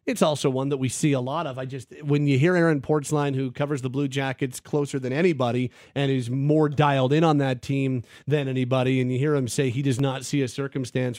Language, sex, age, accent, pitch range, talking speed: English, male, 40-59, American, 135-165 Hz, 240 wpm